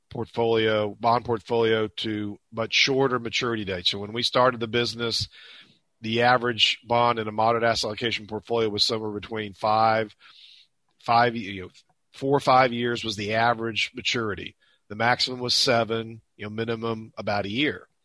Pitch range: 110-130 Hz